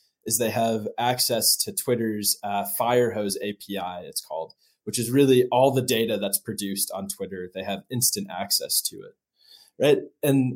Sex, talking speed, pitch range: male, 165 wpm, 110-135 Hz